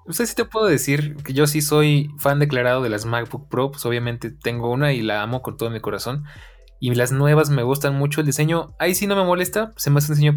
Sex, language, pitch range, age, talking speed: male, Spanish, 120-145 Hz, 20-39, 270 wpm